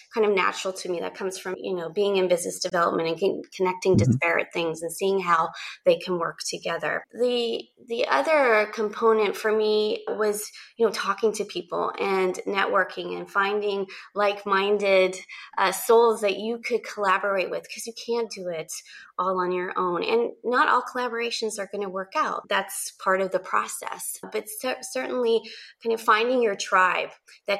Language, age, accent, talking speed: English, 20-39, American, 175 wpm